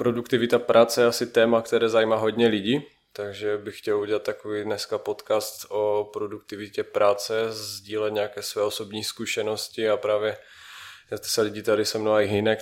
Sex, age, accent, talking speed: male, 20-39, native, 165 wpm